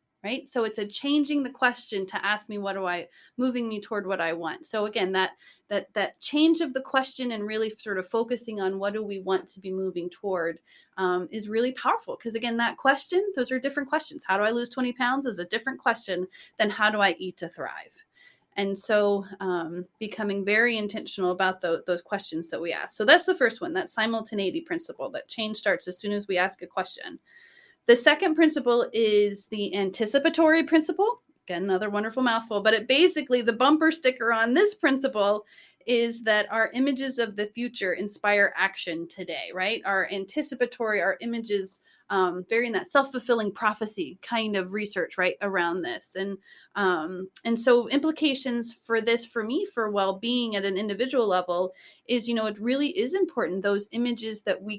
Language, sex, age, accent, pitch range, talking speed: English, female, 30-49, American, 195-260 Hz, 190 wpm